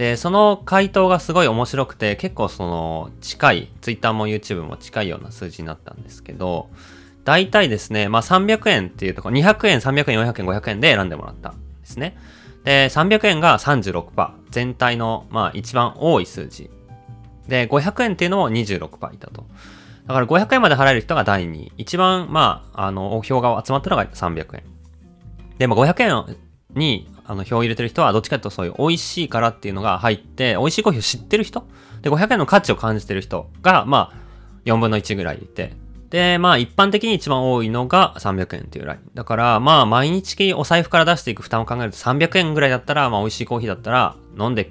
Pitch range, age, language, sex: 100-155 Hz, 20-39, Japanese, male